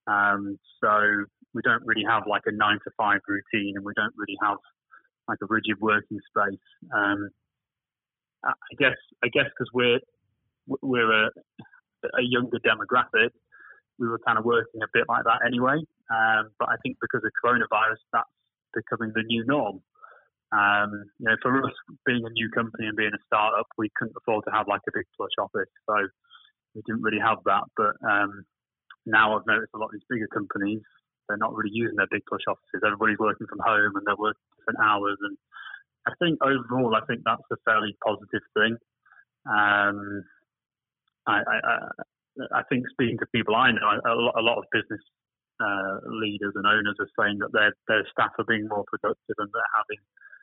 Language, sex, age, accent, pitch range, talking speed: English, male, 20-39, British, 105-120 Hz, 185 wpm